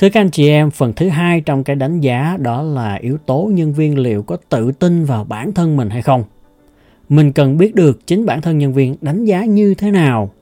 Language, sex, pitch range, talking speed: Vietnamese, male, 115-155 Hz, 240 wpm